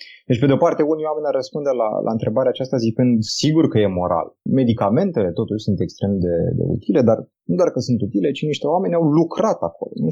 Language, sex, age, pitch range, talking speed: Romanian, male, 30-49, 90-120 Hz, 215 wpm